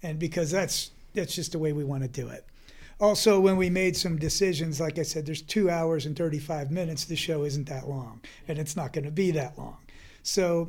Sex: male